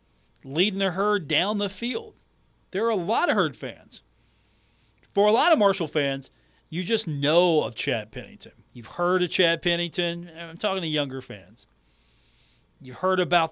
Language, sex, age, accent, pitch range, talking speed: English, male, 40-59, American, 130-175 Hz, 175 wpm